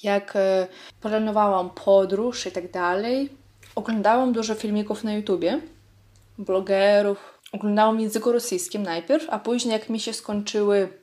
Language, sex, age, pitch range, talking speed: Polish, female, 20-39, 185-220 Hz, 120 wpm